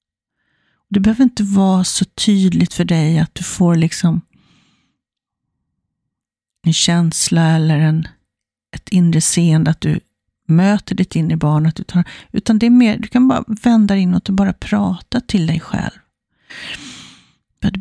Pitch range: 165-195 Hz